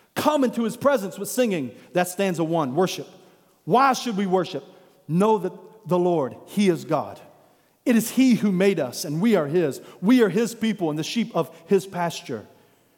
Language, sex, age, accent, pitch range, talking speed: English, male, 40-59, American, 165-235 Hz, 195 wpm